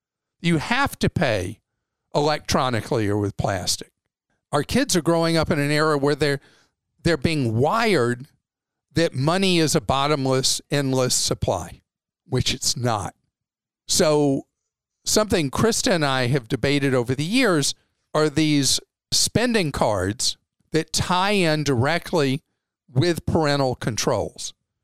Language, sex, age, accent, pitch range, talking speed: English, male, 50-69, American, 125-160 Hz, 125 wpm